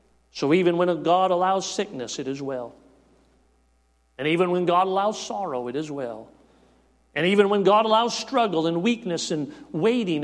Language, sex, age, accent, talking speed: English, male, 50-69, American, 165 wpm